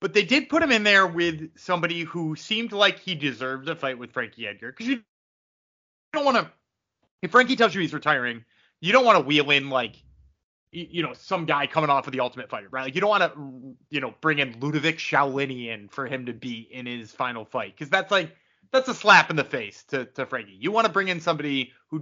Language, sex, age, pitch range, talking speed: English, male, 20-39, 145-210 Hz, 235 wpm